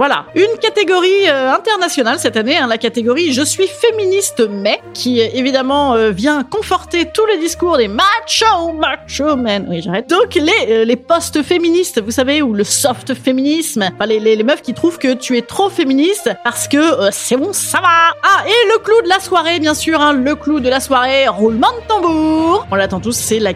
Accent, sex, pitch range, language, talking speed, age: French, female, 225-330 Hz, French, 215 wpm, 30-49